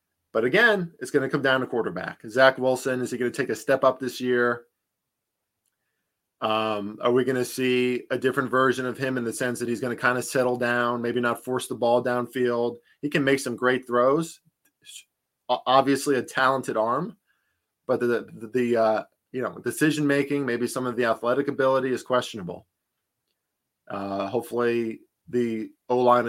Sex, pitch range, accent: male, 110-125 Hz, American